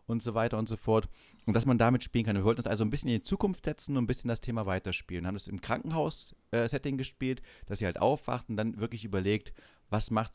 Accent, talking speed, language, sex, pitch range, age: German, 255 wpm, German, male, 95-125 Hz, 30-49